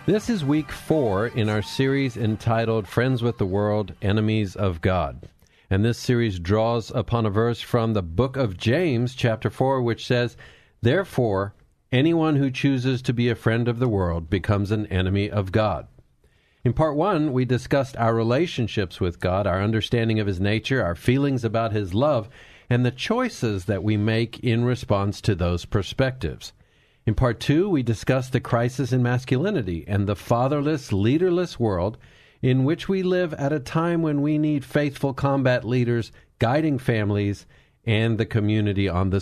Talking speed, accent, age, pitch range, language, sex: 170 wpm, American, 50-69, 105-130 Hz, English, male